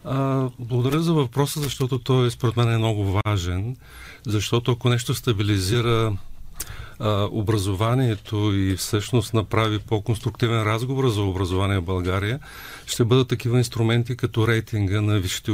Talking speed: 130 wpm